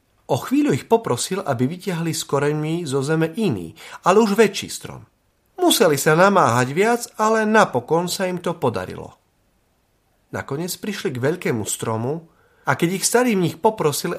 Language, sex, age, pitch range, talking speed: Slovak, male, 40-59, 115-185 Hz, 150 wpm